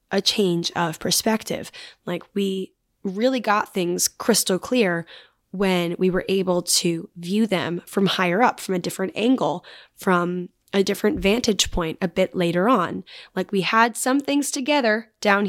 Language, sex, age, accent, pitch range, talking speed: English, female, 10-29, American, 180-225 Hz, 160 wpm